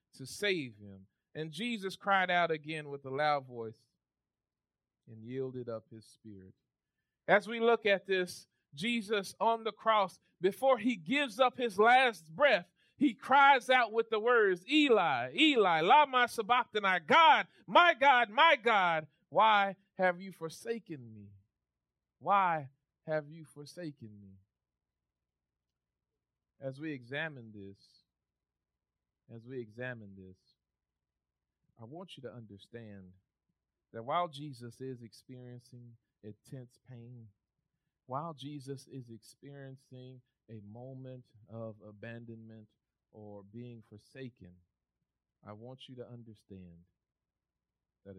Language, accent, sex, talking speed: English, American, male, 115 wpm